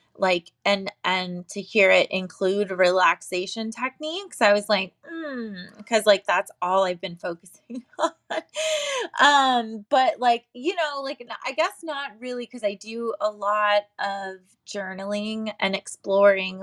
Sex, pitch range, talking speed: female, 180-220 Hz, 145 wpm